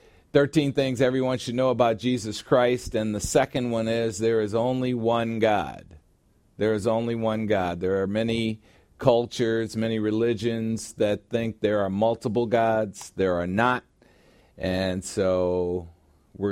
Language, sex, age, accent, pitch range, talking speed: English, male, 50-69, American, 95-120 Hz, 150 wpm